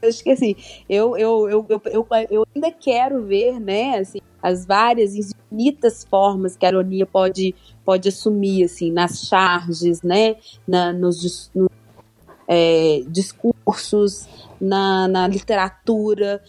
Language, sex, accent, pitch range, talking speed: Portuguese, female, Brazilian, 180-225 Hz, 125 wpm